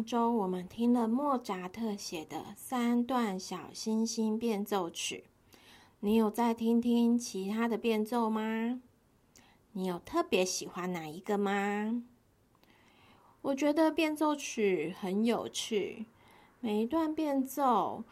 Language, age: Chinese, 30-49